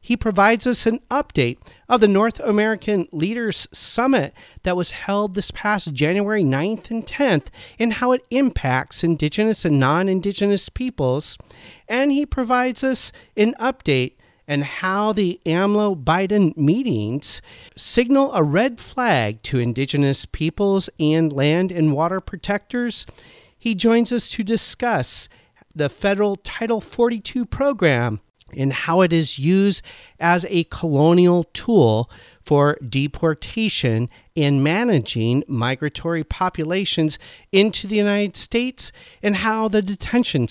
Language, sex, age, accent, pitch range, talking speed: English, male, 40-59, American, 145-215 Hz, 125 wpm